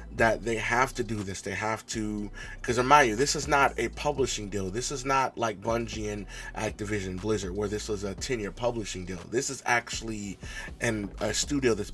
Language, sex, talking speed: English, male, 205 wpm